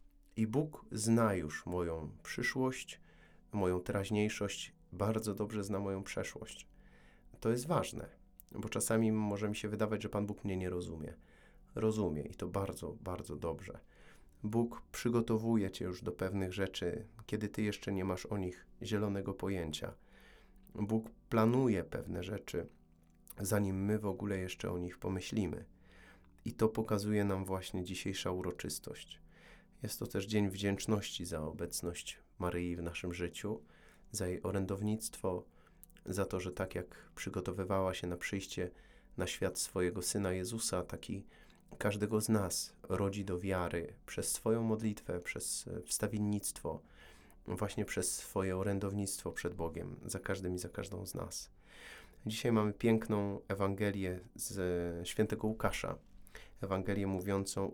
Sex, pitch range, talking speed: male, 90-105 Hz, 135 wpm